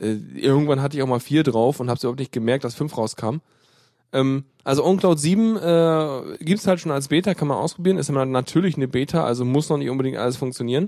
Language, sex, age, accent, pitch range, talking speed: German, male, 10-29, German, 125-160 Hz, 225 wpm